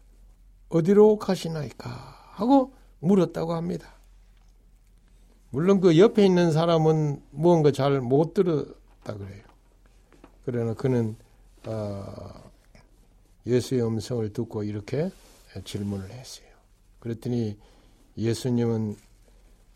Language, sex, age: Korean, male, 60-79